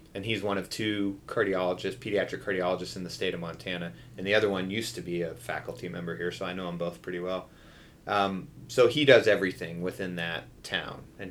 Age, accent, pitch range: 30-49, American, 90-105 Hz